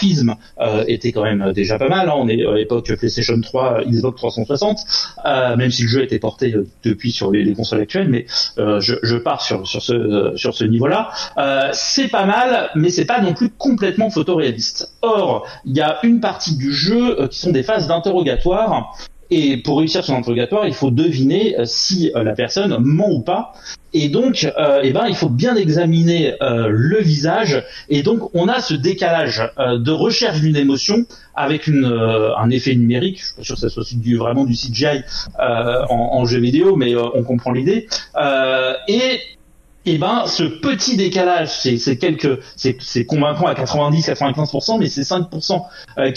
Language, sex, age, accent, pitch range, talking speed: French, male, 40-59, French, 120-180 Hz, 200 wpm